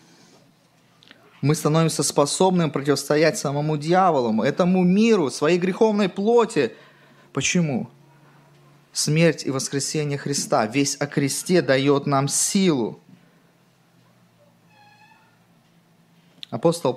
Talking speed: 80 wpm